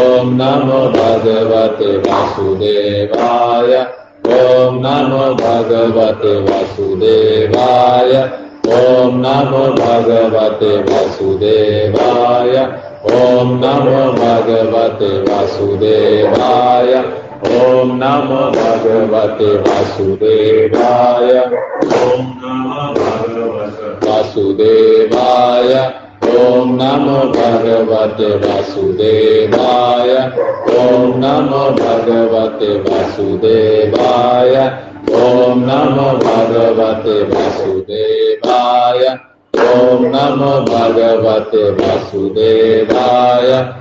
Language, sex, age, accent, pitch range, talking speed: Hindi, male, 30-49, native, 115-140 Hz, 50 wpm